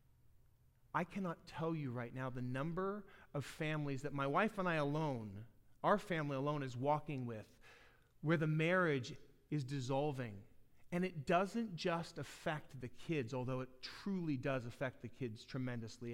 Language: English